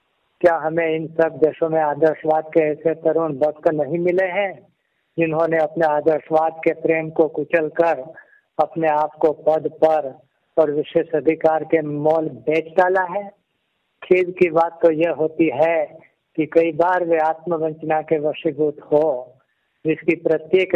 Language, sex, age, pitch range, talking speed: Hindi, male, 60-79, 155-170 Hz, 145 wpm